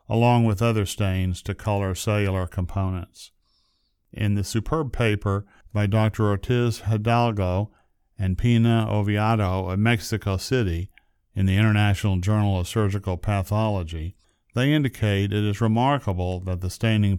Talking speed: 130 wpm